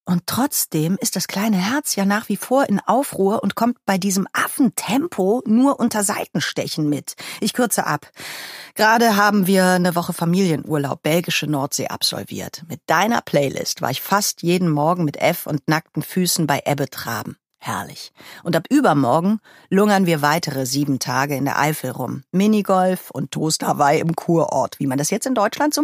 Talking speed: 170 wpm